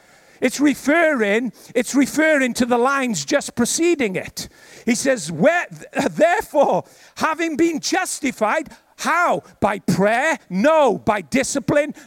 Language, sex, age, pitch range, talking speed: English, male, 50-69, 240-300 Hz, 115 wpm